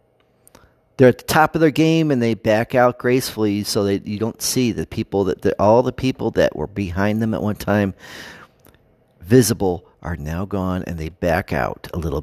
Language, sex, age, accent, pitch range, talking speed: English, male, 40-59, American, 105-150 Hz, 200 wpm